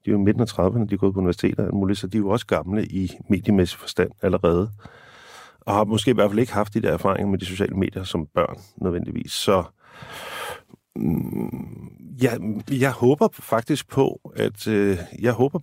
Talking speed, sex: 190 wpm, male